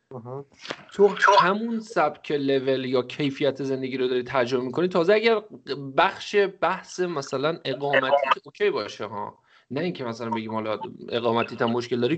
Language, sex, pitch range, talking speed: Persian, male, 125-175 Hz, 150 wpm